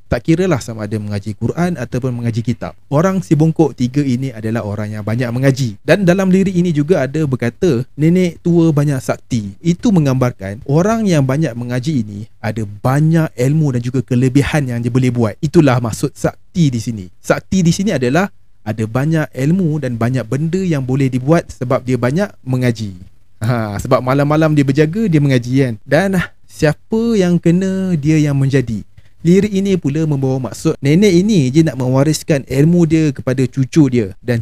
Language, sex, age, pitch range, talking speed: Malay, male, 30-49, 120-160 Hz, 175 wpm